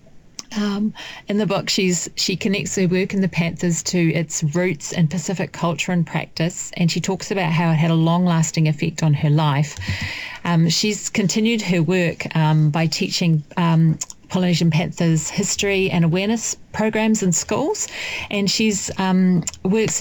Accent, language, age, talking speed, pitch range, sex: Australian, English, 40-59, 165 wpm, 155-185 Hz, female